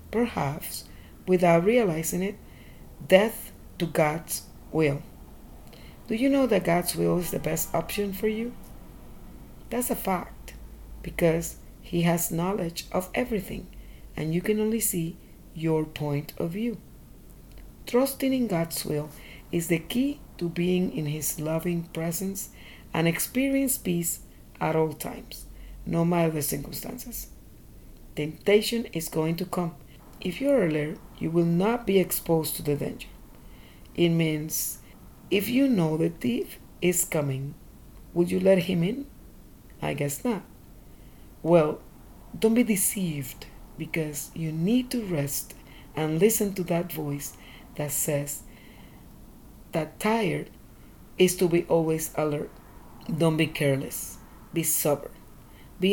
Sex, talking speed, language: female, 135 wpm, English